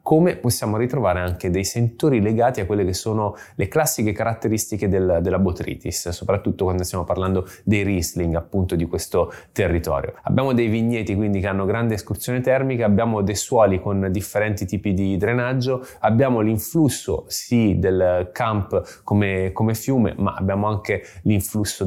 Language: Italian